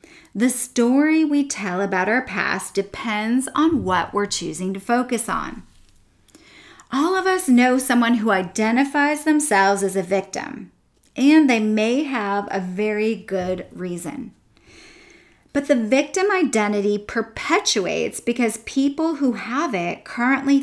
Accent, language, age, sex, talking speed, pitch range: American, English, 30-49, female, 130 wpm, 195-260 Hz